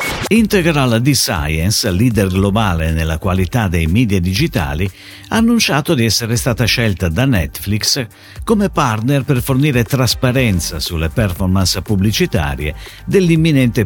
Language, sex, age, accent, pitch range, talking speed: Italian, male, 50-69, native, 90-145 Hz, 115 wpm